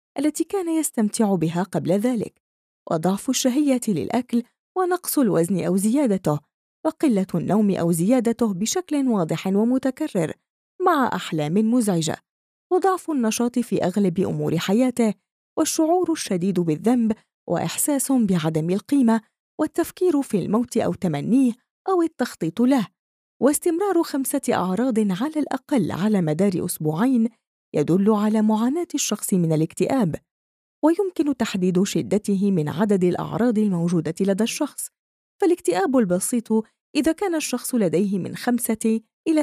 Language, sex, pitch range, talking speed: Arabic, female, 185-275 Hz, 115 wpm